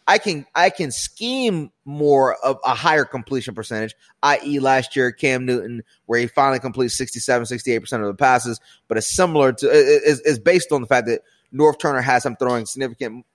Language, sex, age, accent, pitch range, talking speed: English, male, 30-49, American, 120-160 Hz, 190 wpm